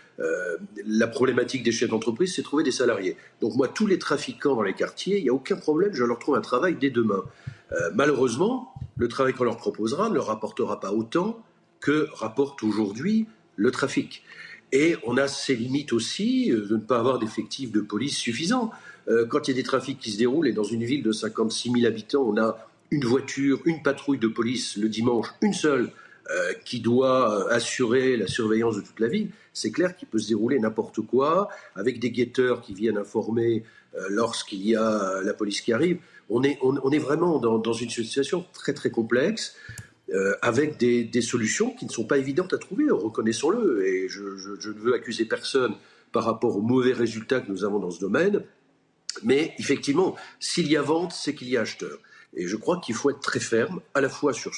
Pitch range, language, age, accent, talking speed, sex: 115-155 Hz, French, 50-69, French, 210 wpm, male